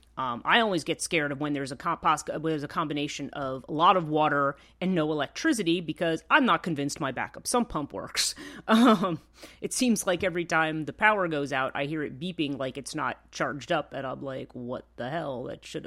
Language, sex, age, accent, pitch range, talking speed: English, female, 30-49, American, 140-185 Hz, 210 wpm